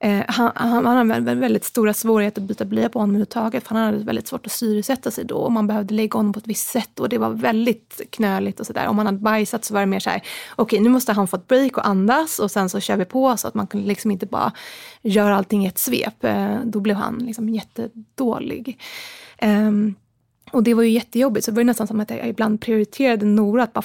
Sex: female